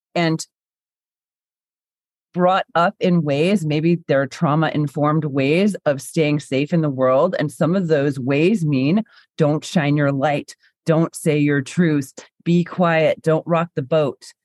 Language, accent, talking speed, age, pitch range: English, American, 145 wpm, 30-49, 145-175 Hz